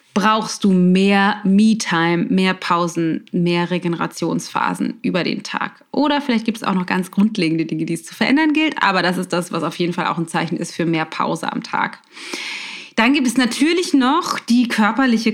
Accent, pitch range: German, 180-225 Hz